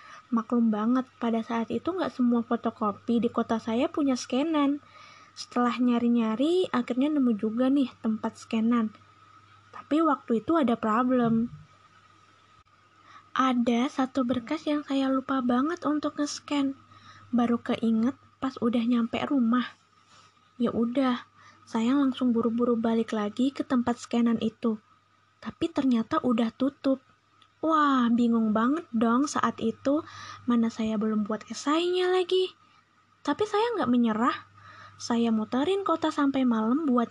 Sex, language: female, Indonesian